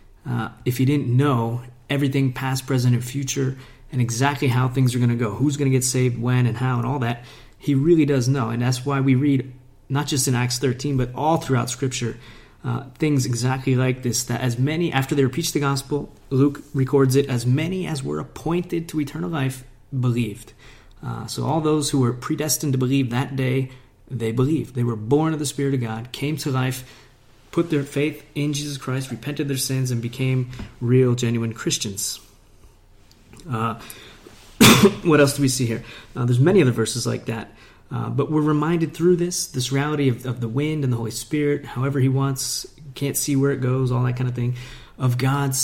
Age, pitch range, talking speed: 30-49, 120-140 Hz, 205 wpm